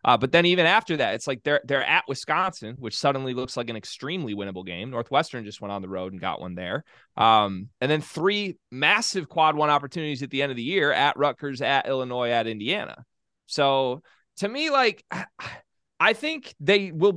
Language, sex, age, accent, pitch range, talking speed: English, male, 20-39, American, 115-150 Hz, 205 wpm